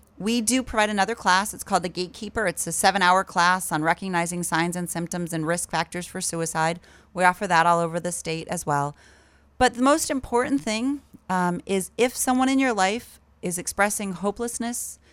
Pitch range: 165-210 Hz